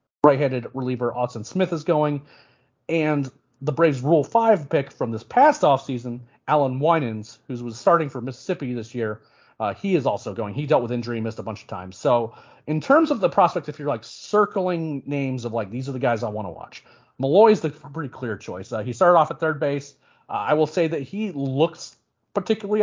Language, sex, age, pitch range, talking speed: English, male, 30-49, 115-150 Hz, 215 wpm